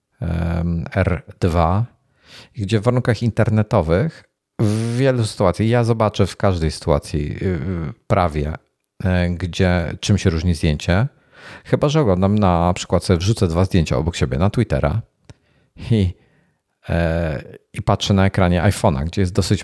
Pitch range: 85-105 Hz